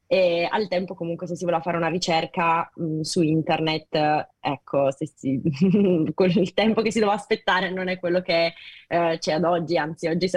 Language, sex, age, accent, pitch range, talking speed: Italian, female, 20-39, native, 165-190 Hz, 180 wpm